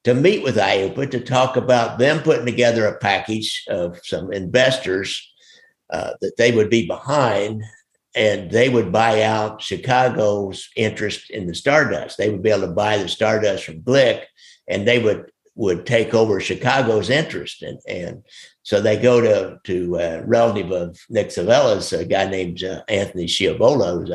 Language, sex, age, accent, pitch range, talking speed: English, male, 60-79, American, 95-125 Hz, 170 wpm